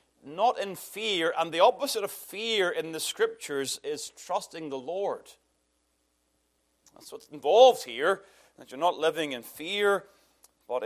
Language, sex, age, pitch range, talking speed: English, male, 30-49, 145-220 Hz, 145 wpm